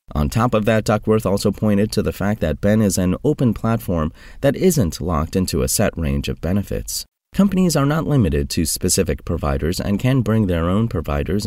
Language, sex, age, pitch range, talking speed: English, male, 30-49, 75-115 Hz, 200 wpm